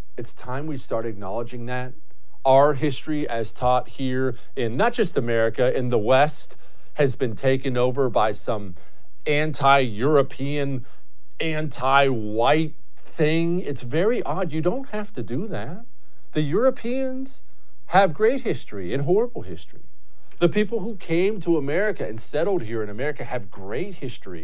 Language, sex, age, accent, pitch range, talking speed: English, male, 40-59, American, 125-180 Hz, 140 wpm